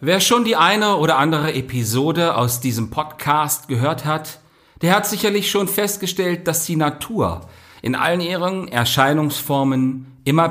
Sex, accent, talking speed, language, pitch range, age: male, German, 145 wpm, German, 105-155 Hz, 40-59